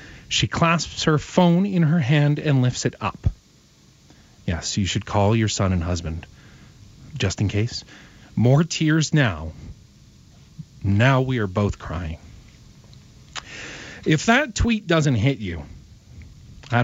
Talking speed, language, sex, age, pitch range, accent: 130 wpm, English, male, 40-59, 100-130 Hz, American